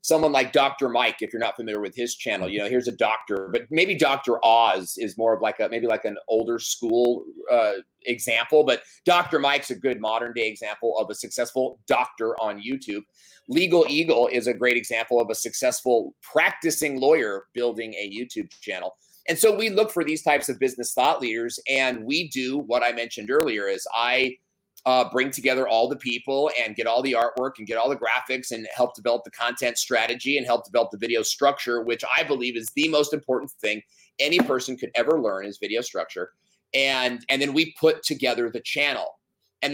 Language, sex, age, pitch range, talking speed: English, male, 30-49, 120-165 Hz, 200 wpm